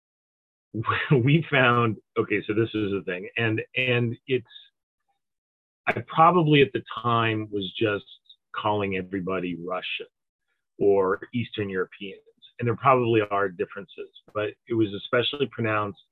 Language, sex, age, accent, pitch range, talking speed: English, male, 30-49, American, 105-135 Hz, 125 wpm